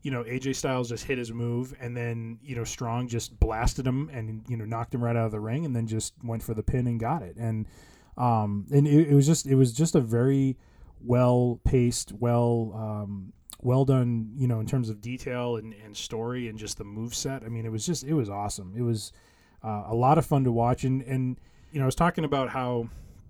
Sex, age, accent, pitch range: male, 20-39, American, 115-130 Hz